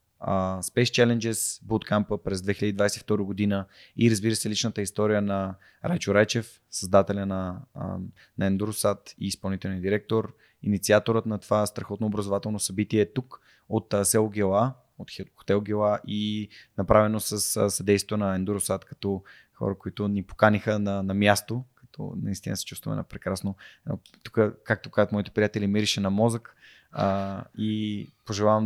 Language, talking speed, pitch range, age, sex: Bulgarian, 150 wpm, 100-115 Hz, 20-39, male